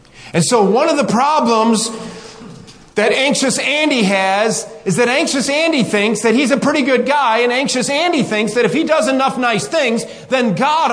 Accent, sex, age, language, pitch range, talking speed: American, male, 40-59, English, 170-275 Hz, 185 wpm